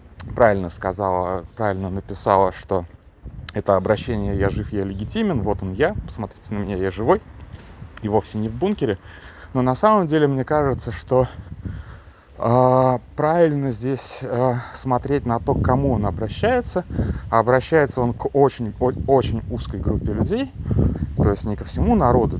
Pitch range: 95-130 Hz